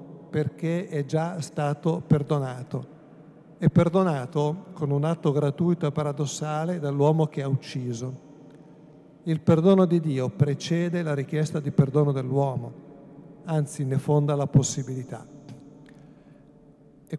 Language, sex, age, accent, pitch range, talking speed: Italian, male, 50-69, native, 140-155 Hz, 115 wpm